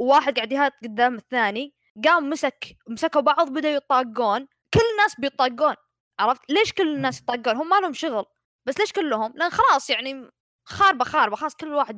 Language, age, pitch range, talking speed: Arabic, 20-39, 230-320 Hz, 165 wpm